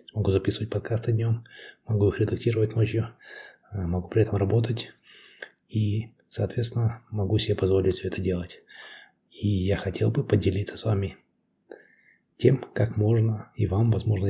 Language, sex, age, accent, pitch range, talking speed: Russian, male, 20-39, native, 100-115 Hz, 140 wpm